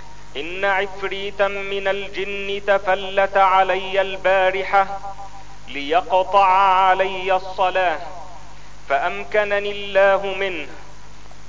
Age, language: 40-59, Arabic